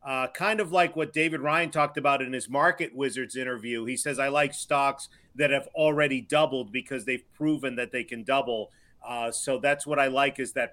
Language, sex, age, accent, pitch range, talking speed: English, male, 40-59, American, 130-150 Hz, 215 wpm